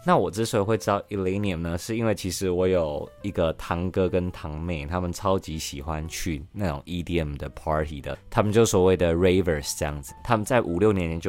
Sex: male